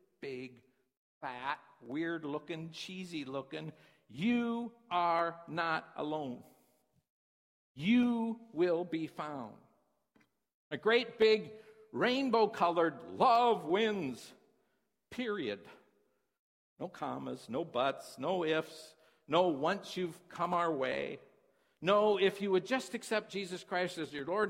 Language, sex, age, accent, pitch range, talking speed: English, male, 50-69, American, 155-230 Hz, 105 wpm